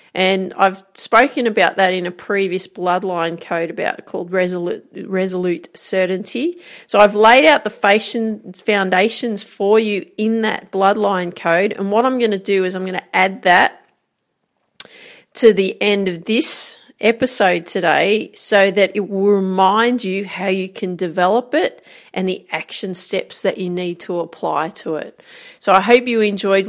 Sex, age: female, 40-59